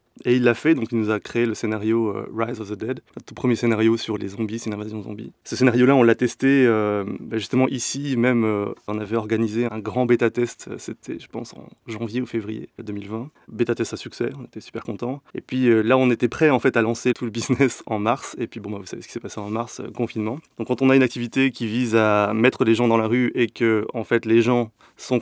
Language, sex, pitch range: French, male, 110-125 Hz